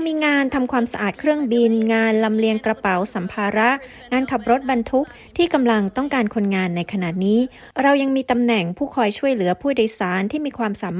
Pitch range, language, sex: 205-255 Hz, Thai, female